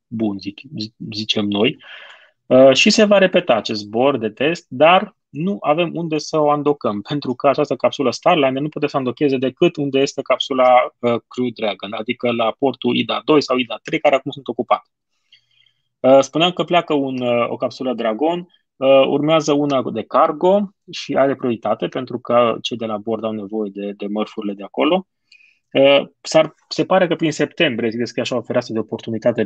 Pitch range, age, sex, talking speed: 115-145 Hz, 20-39, male, 185 wpm